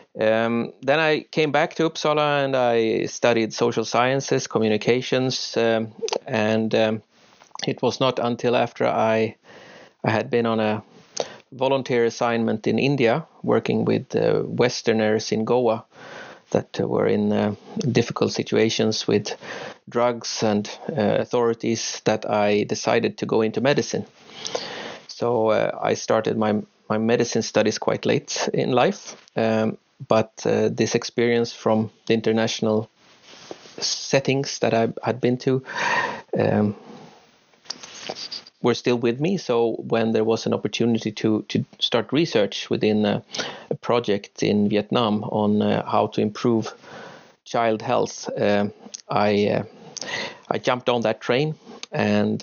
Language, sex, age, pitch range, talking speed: Swedish, male, 30-49, 110-120 Hz, 135 wpm